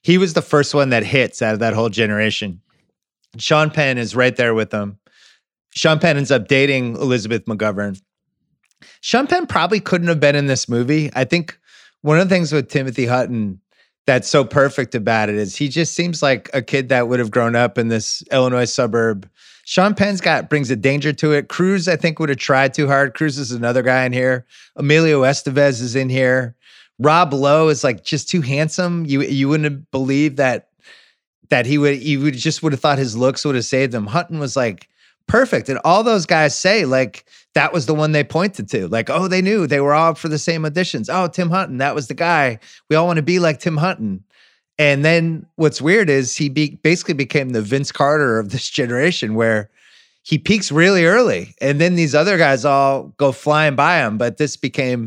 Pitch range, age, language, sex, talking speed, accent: 125-160 Hz, 30-49, English, male, 210 wpm, American